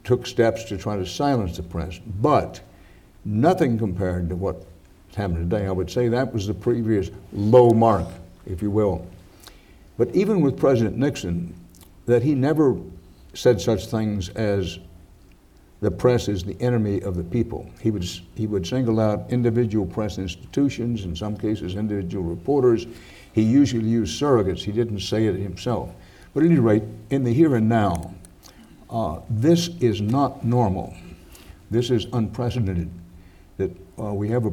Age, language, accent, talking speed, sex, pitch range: 60-79, English, American, 160 wpm, male, 90-120 Hz